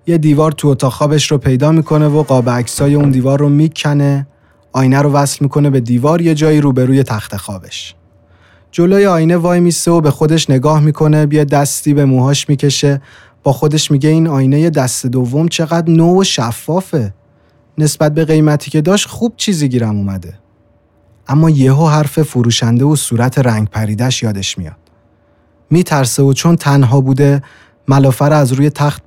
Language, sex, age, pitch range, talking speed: Persian, male, 30-49, 120-155 Hz, 160 wpm